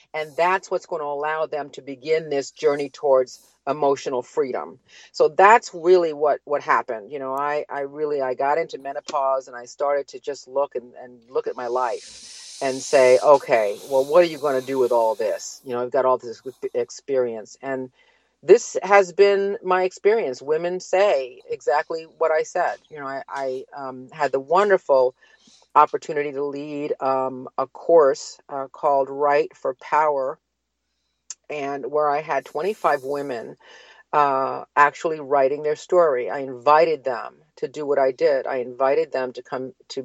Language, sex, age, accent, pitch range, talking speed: English, female, 50-69, American, 135-195 Hz, 175 wpm